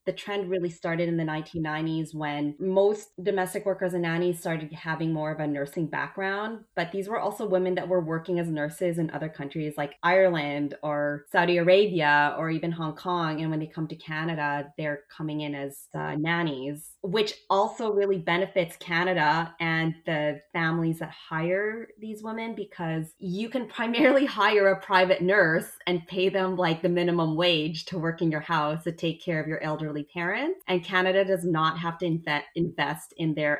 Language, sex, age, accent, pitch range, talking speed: English, female, 20-39, American, 155-190 Hz, 180 wpm